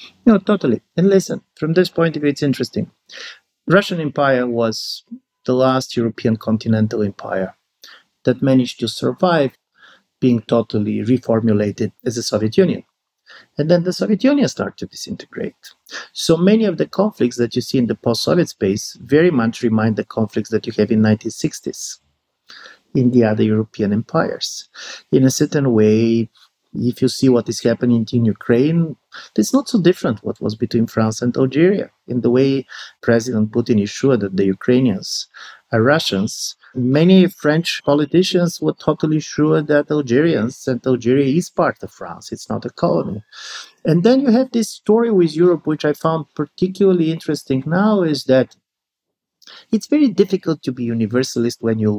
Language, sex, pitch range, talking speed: English, male, 115-165 Hz, 165 wpm